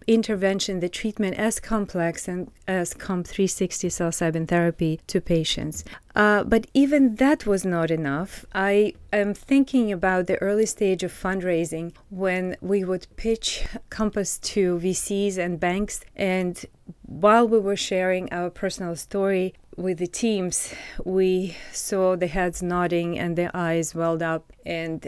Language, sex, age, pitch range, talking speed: English, female, 30-49, 175-200 Hz, 145 wpm